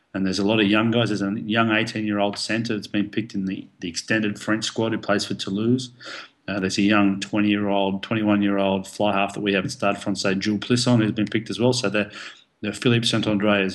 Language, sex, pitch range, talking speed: English, male, 100-110 Hz, 225 wpm